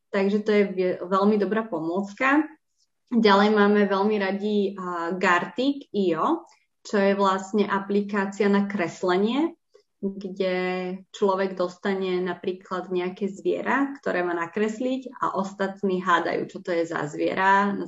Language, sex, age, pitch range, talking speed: Slovak, female, 20-39, 180-205 Hz, 125 wpm